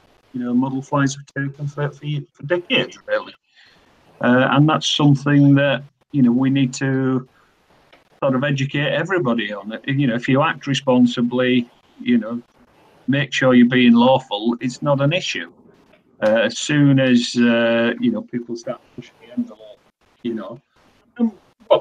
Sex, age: male, 50-69